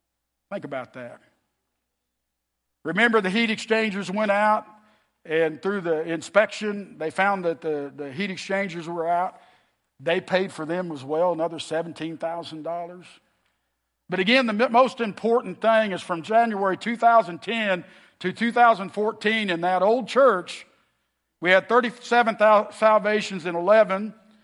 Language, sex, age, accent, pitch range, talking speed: English, male, 50-69, American, 175-225 Hz, 145 wpm